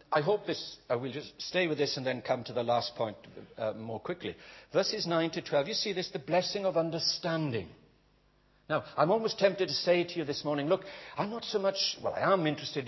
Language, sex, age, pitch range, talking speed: English, male, 60-79, 115-180 Hz, 230 wpm